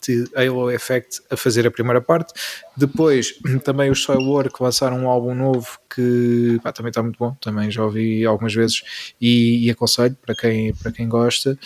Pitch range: 115-135 Hz